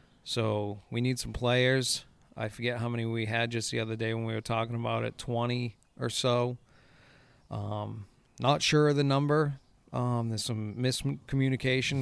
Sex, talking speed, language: male, 170 wpm, English